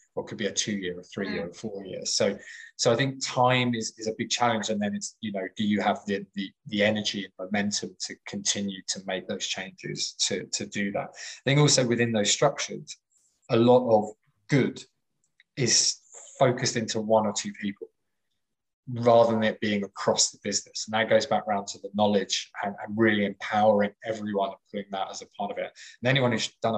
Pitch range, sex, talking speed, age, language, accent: 105-125 Hz, male, 205 wpm, 20-39, English, British